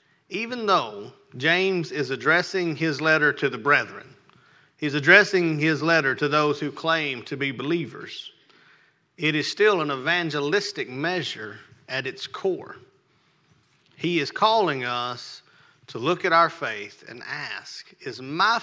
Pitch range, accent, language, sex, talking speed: 140-185 Hz, American, English, male, 140 wpm